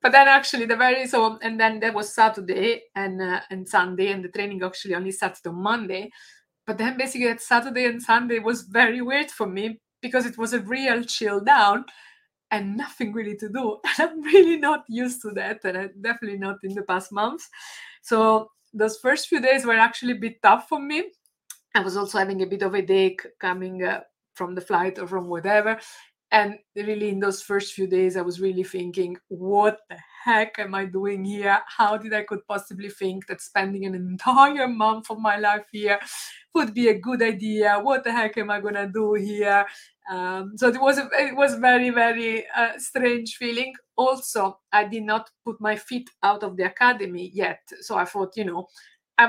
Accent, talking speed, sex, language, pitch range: Italian, 205 wpm, female, English, 195-245 Hz